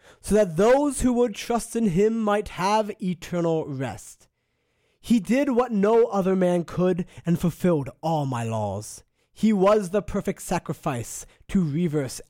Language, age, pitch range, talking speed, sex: English, 20-39, 135-205 Hz, 150 wpm, male